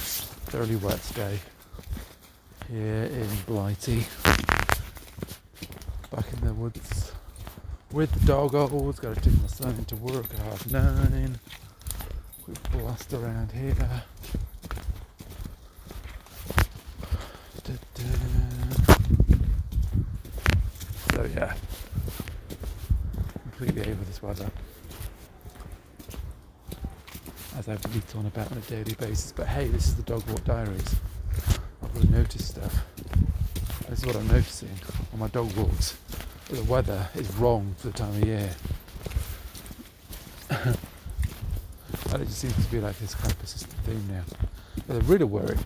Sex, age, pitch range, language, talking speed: male, 40-59, 85-110 Hz, English, 115 wpm